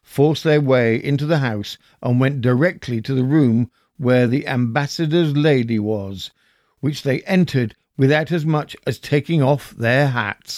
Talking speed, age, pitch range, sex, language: 160 wpm, 60-79, 125-165 Hz, male, English